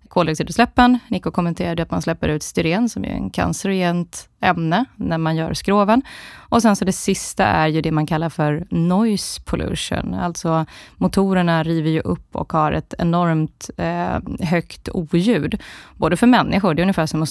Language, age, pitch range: Swedish, 20-39, 160-195 Hz